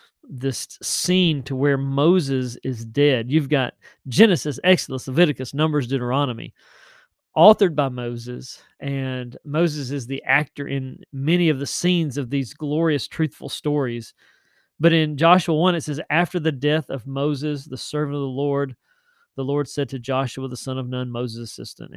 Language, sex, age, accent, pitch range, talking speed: English, male, 40-59, American, 130-165 Hz, 160 wpm